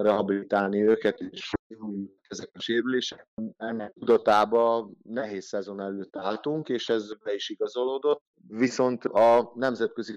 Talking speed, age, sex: 120 wpm, 30-49, male